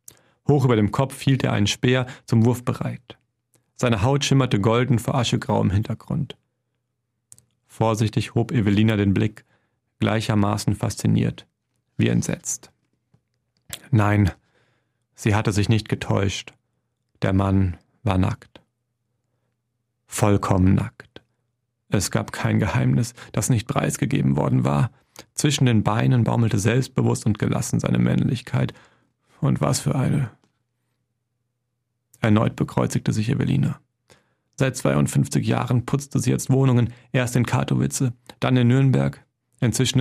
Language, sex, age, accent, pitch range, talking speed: German, male, 40-59, German, 110-130 Hz, 120 wpm